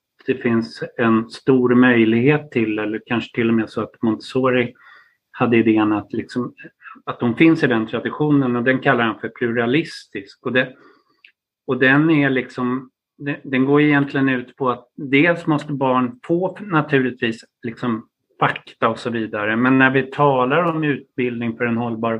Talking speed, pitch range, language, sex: 165 wpm, 120-140 Hz, Swedish, male